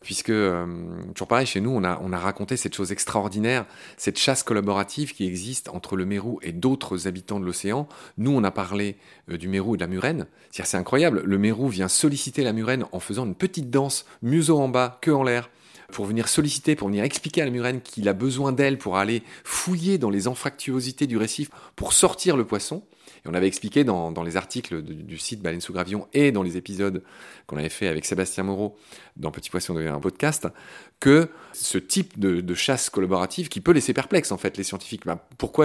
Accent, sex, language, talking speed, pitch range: French, male, French, 215 wpm, 95-140 Hz